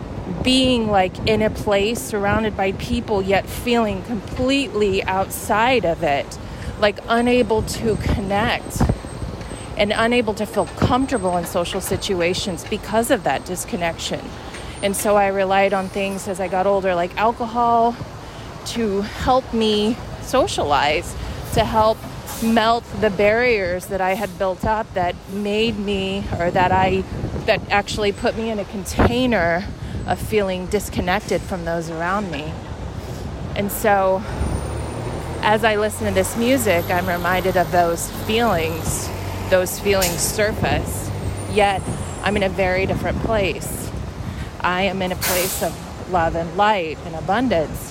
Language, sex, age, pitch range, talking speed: English, female, 30-49, 180-220 Hz, 140 wpm